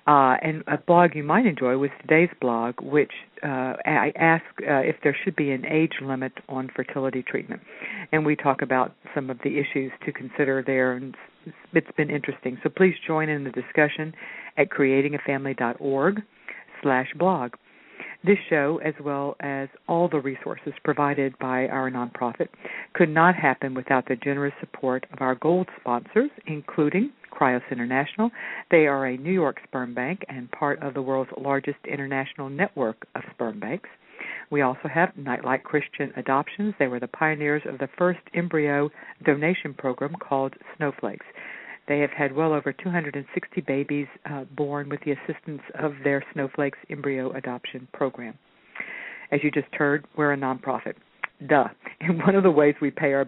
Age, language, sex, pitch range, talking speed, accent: 50-69, English, female, 130-155 Hz, 165 wpm, American